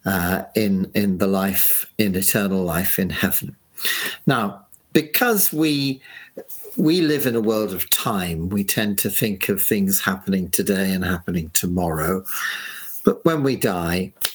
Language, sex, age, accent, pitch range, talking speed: English, male, 50-69, British, 95-135 Hz, 145 wpm